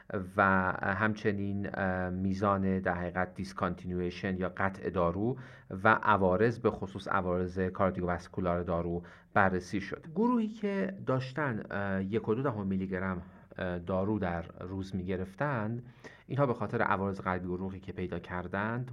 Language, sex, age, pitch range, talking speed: Persian, male, 40-59, 90-105 Hz, 115 wpm